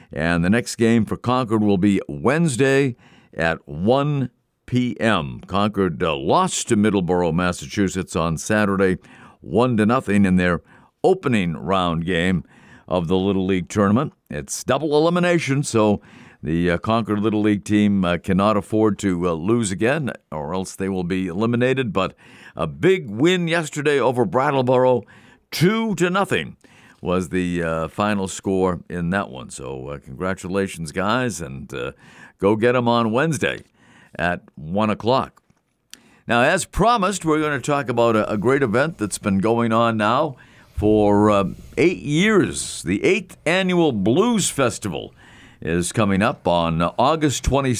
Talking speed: 150 wpm